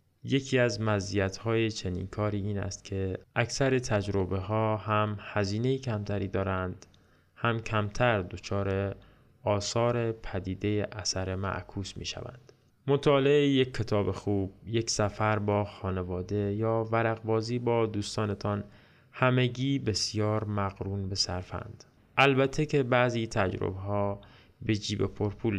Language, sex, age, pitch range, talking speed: Persian, male, 20-39, 100-120 Hz, 115 wpm